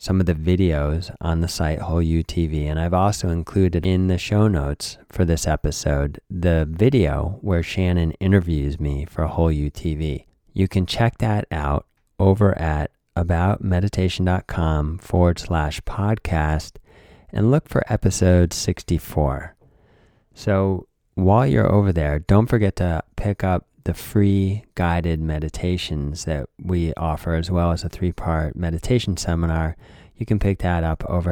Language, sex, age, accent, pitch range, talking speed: English, male, 30-49, American, 80-100 Hz, 145 wpm